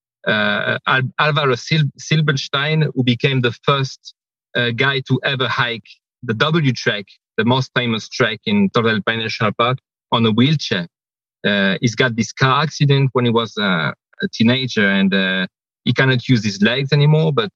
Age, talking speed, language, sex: 40-59, 165 wpm, English, male